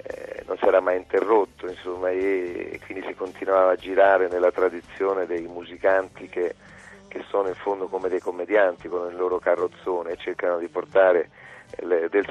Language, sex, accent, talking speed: Italian, male, native, 160 wpm